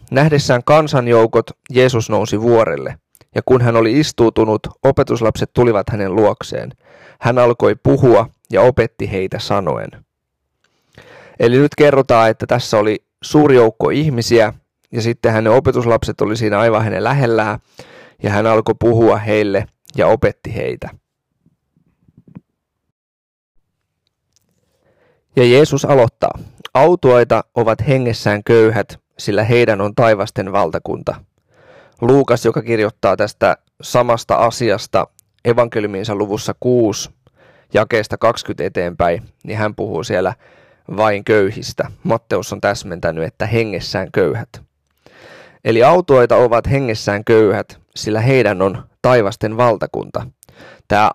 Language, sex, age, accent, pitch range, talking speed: Finnish, male, 30-49, native, 105-125 Hz, 110 wpm